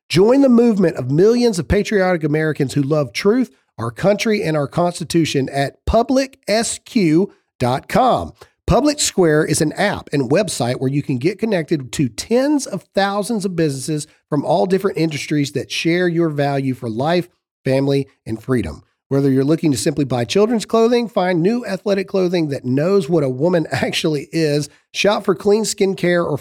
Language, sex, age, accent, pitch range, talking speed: English, male, 40-59, American, 135-195 Hz, 170 wpm